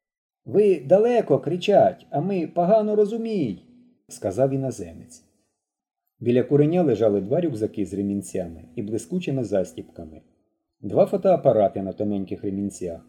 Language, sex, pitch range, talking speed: Ukrainian, male, 105-155 Hz, 110 wpm